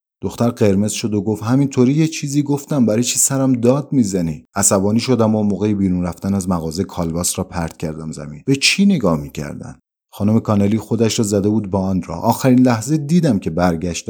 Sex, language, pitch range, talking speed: male, Persian, 85-115 Hz, 190 wpm